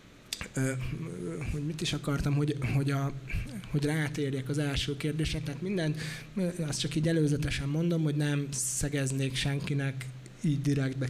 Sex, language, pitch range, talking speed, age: male, Hungarian, 135-155 Hz, 135 wpm, 20-39